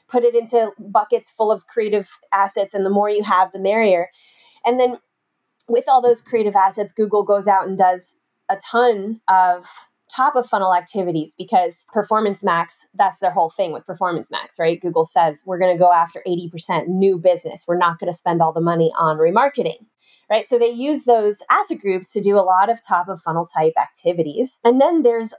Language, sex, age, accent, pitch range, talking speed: English, female, 20-39, American, 185-240 Hz, 200 wpm